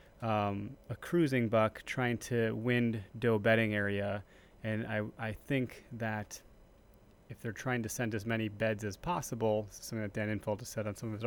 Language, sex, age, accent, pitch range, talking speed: English, male, 30-49, American, 110-125 Hz, 185 wpm